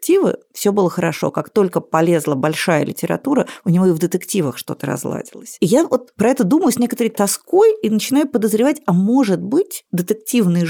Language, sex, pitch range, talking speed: Russian, female, 160-210 Hz, 175 wpm